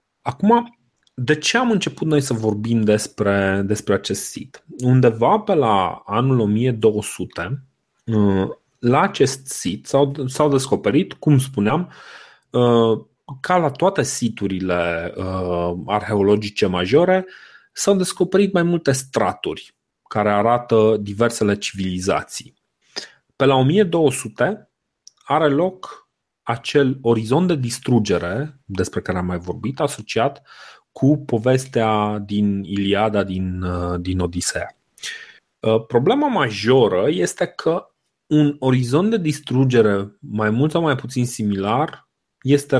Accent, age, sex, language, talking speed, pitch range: native, 30-49, male, Romanian, 105 wpm, 105-145 Hz